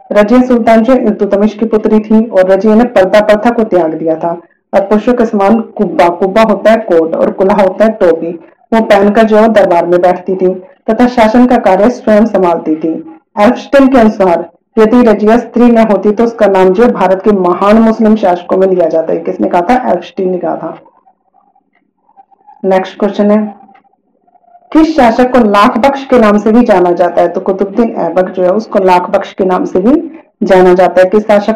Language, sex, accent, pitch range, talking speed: Hindi, female, native, 185-230 Hz, 140 wpm